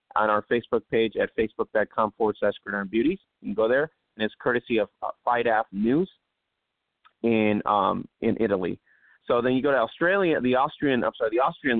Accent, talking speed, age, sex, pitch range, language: American, 170 wpm, 30-49, male, 110-135 Hz, English